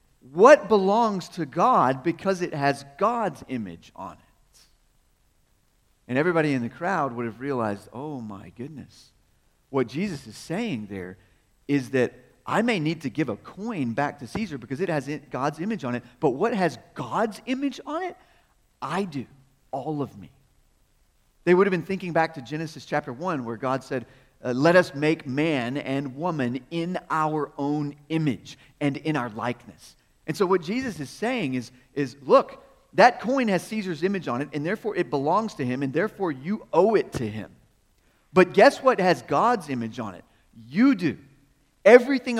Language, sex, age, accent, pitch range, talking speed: English, male, 40-59, American, 130-185 Hz, 175 wpm